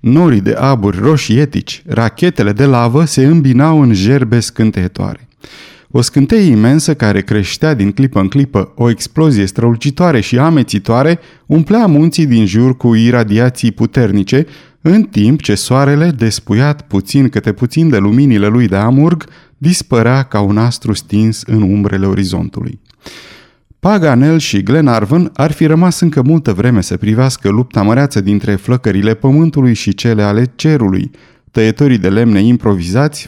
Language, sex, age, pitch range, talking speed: Romanian, male, 30-49, 105-145 Hz, 140 wpm